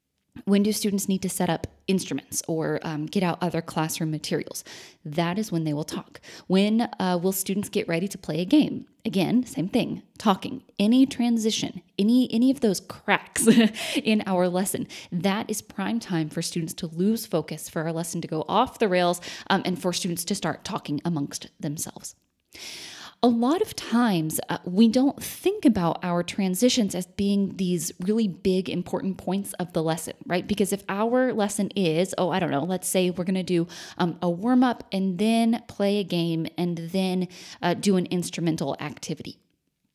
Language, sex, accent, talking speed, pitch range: English, female, American, 185 wpm, 175-220 Hz